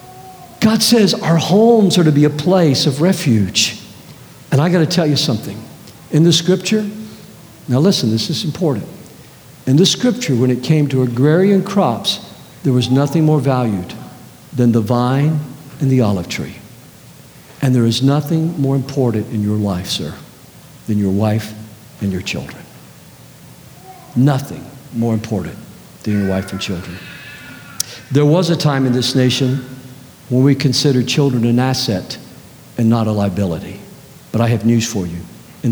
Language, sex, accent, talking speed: English, male, American, 160 wpm